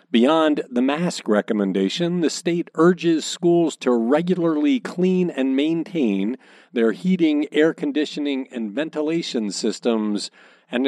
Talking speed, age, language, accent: 115 wpm, 50-69, English, American